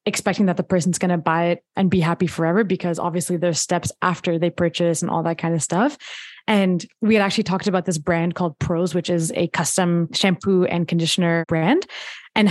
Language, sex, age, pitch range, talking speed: English, female, 20-39, 170-195 Hz, 210 wpm